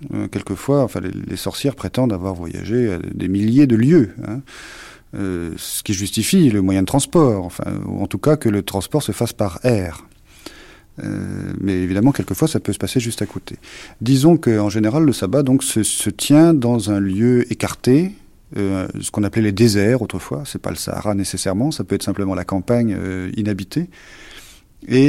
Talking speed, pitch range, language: 190 wpm, 95-125 Hz, French